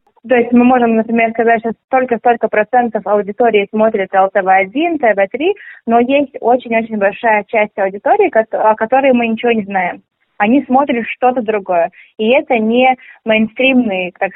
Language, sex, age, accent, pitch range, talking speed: Russian, female, 20-39, native, 210-250 Hz, 145 wpm